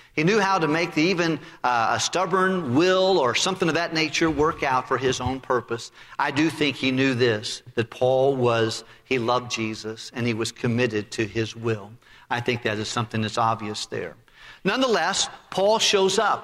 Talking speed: 195 wpm